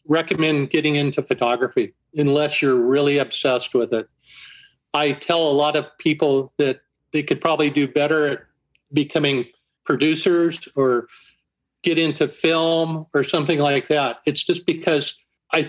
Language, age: English, 50-69